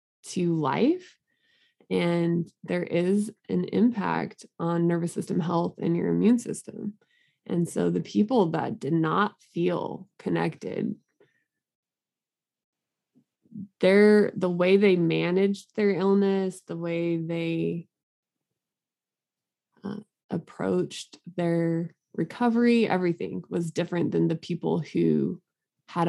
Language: English